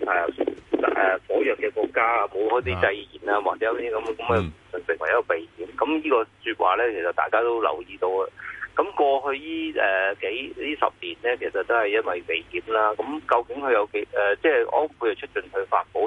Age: 30-49